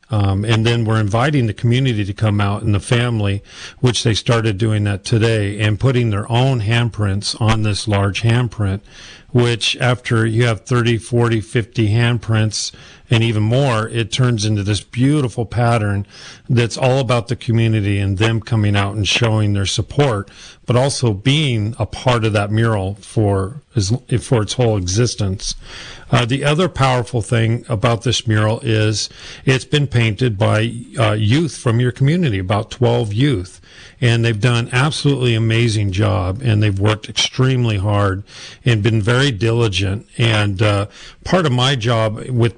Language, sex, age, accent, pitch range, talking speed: English, male, 40-59, American, 105-120 Hz, 160 wpm